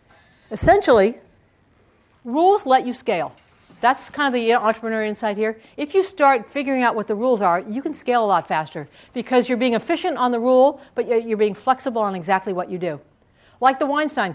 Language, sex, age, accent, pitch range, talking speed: English, female, 50-69, American, 195-265 Hz, 190 wpm